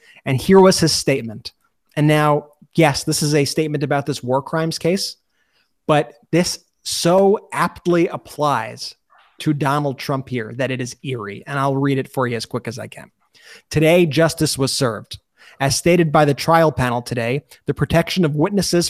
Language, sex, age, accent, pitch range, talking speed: English, male, 30-49, American, 140-165 Hz, 180 wpm